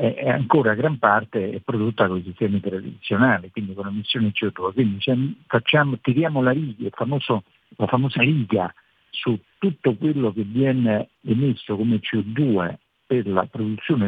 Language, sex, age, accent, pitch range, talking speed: Italian, male, 50-69, native, 100-130 Hz, 150 wpm